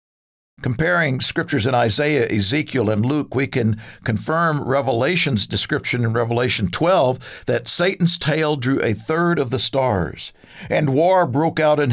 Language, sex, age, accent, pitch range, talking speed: English, male, 50-69, American, 115-165 Hz, 145 wpm